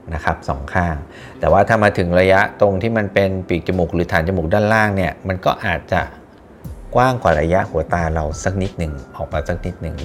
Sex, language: male, Thai